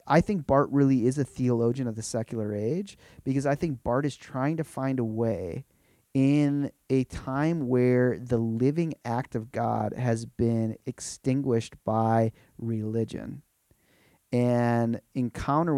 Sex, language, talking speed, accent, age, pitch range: male, English, 140 wpm, American, 30-49, 115-140 Hz